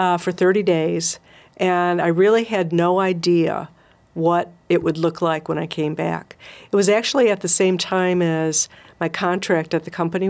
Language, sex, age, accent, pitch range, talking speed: English, female, 50-69, American, 165-195 Hz, 185 wpm